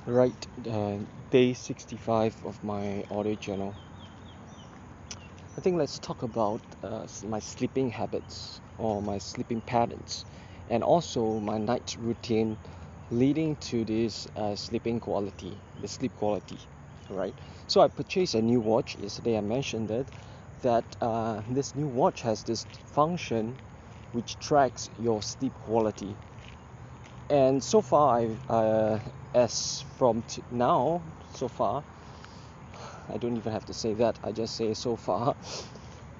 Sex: male